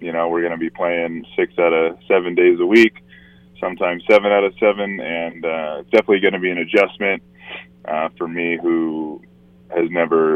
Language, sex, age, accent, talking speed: English, male, 20-39, American, 195 wpm